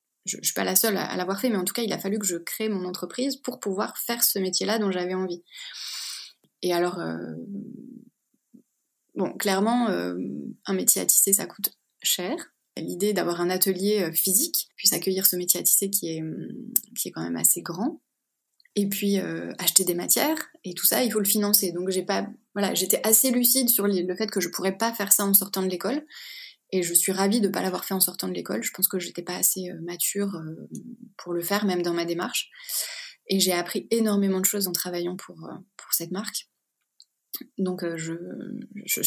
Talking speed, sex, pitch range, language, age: 215 wpm, female, 180-225 Hz, French, 20-39